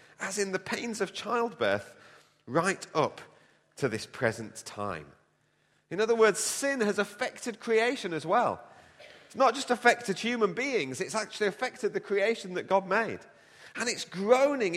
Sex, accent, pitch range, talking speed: male, British, 140-215 Hz, 155 wpm